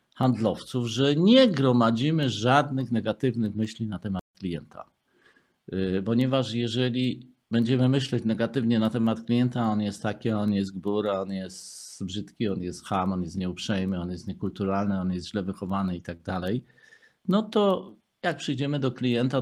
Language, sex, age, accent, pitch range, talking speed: Polish, male, 50-69, native, 105-145 Hz, 145 wpm